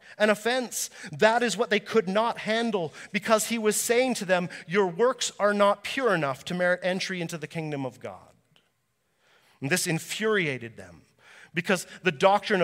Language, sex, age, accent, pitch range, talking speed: English, male, 40-59, American, 160-205 Hz, 170 wpm